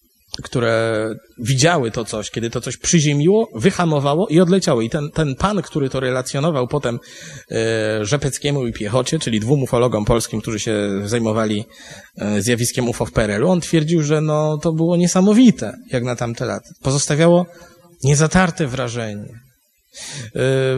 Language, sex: Polish, male